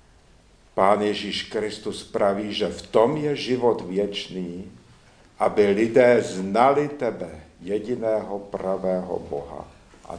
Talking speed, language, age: 105 wpm, Czech, 70-89